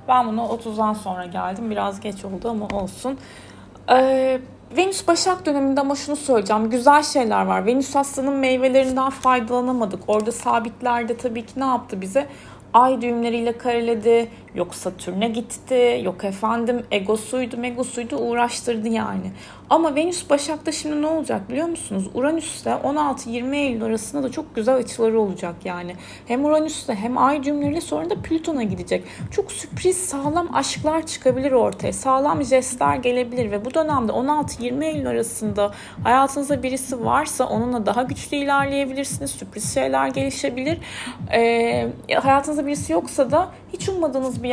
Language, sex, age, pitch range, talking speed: Turkish, female, 30-49, 210-275 Hz, 140 wpm